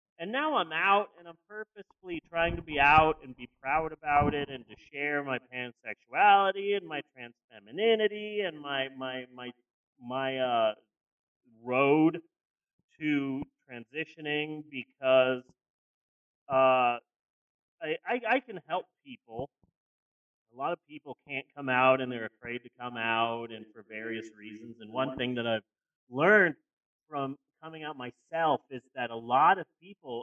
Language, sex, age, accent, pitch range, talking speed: English, male, 30-49, American, 130-180 Hz, 150 wpm